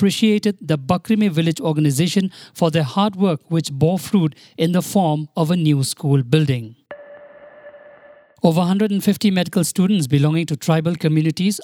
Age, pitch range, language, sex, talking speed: 50-69, 150-185 Hz, English, male, 145 wpm